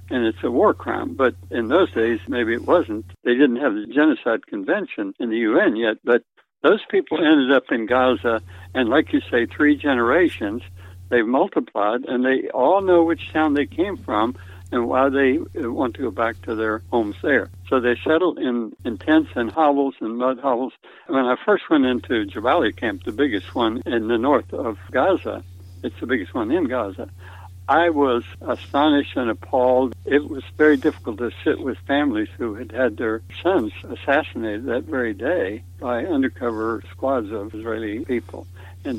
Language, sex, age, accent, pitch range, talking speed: English, male, 60-79, American, 105-145 Hz, 180 wpm